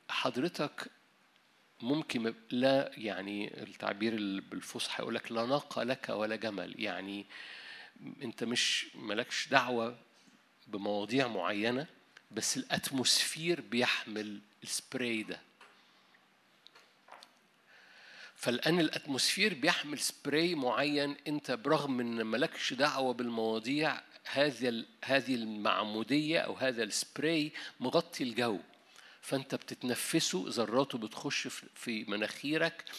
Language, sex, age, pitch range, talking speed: Arabic, male, 50-69, 115-150 Hz, 90 wpm